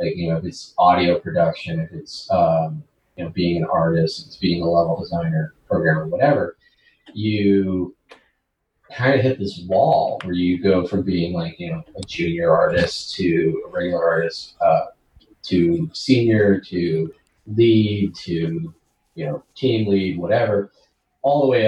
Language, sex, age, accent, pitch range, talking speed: English, male, 30-49, American, 90-135 Hz, 155 wpm